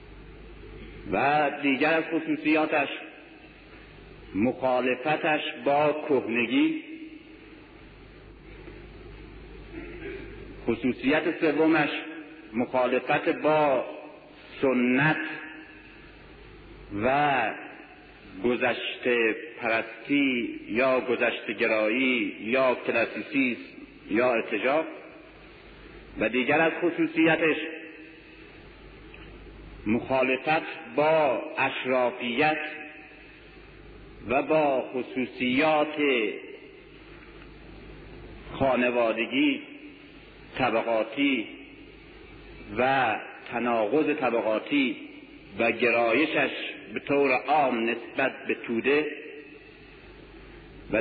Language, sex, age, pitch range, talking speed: Persian, male, 50-69, 125-165 Hz, 55 wpm